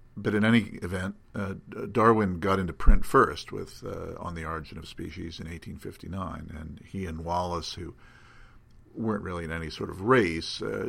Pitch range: 80-100 Hz